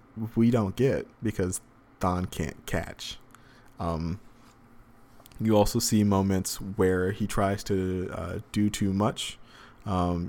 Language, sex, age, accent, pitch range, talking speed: English, male, 20-39, American, 95-120 Hz, 120 wpm